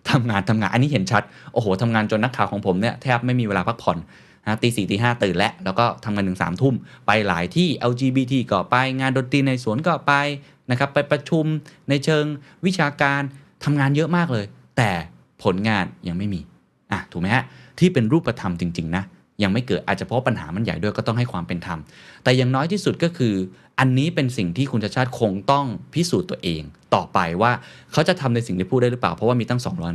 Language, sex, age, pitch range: Thai, male, 20-39, 105-145 Hz